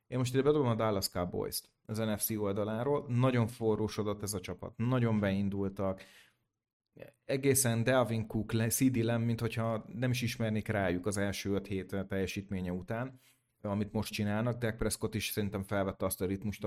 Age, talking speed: 30-49, 155 wpm